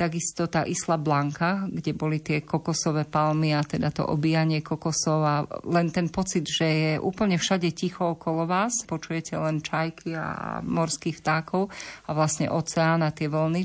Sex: female